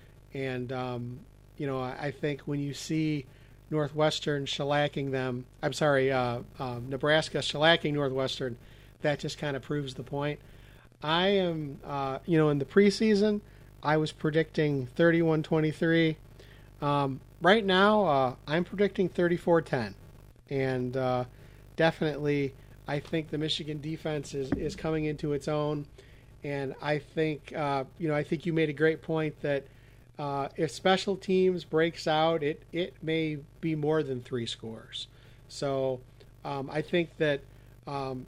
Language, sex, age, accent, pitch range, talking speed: English, male, 40-59, American, 130-160 Hz, 145 wpm